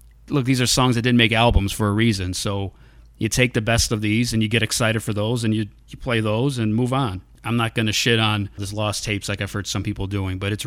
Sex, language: male, English